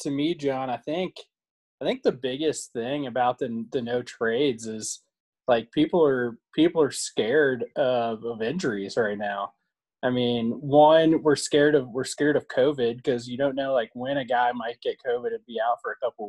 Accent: American